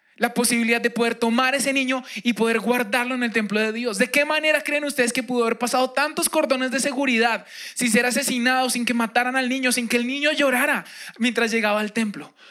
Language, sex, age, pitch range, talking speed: Spanish, male, 20-39, 215-255 Hz, 215 wpm